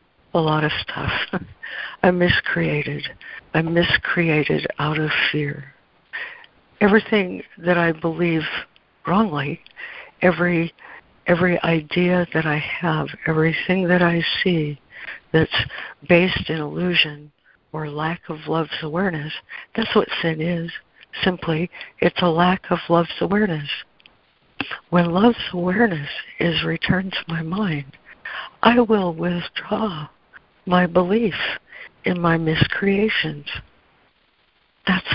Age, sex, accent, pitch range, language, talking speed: 60-79, female, American, 155-180 Hz, English, 110 wpm